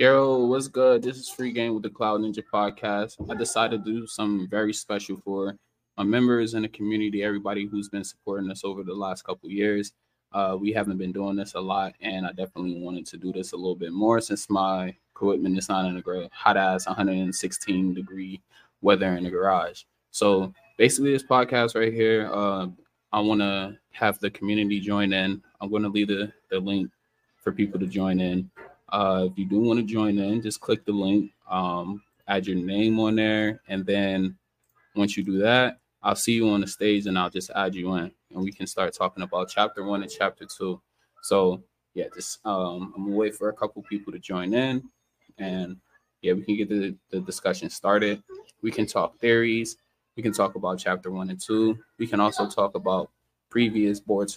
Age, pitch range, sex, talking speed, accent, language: 20-39, 95-110 Hz, male, 205 wpm, American, English